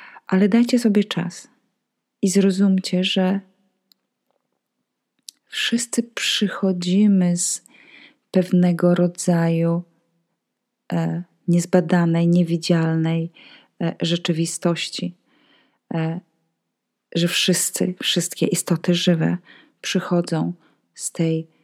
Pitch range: 165-195 Hz